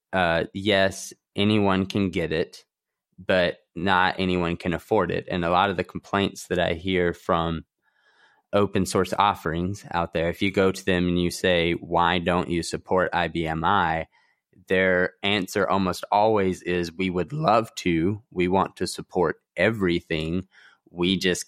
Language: English